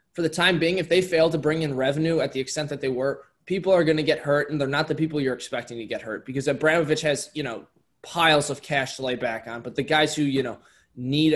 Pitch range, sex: 125-155 Hz, male